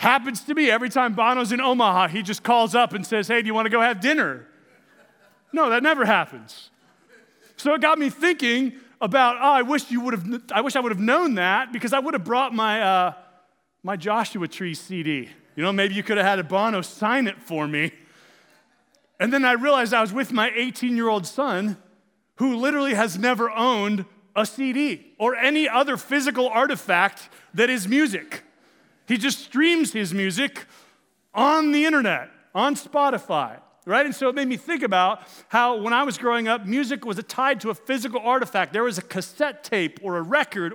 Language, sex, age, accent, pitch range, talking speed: English, male, 30-49, American, 210-275 Hz, 190 wpm